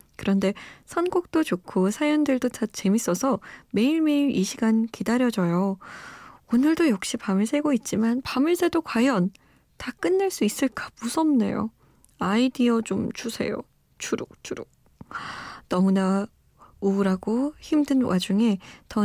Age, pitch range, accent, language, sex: 20-39, 195-270 Hz, native, Korean, female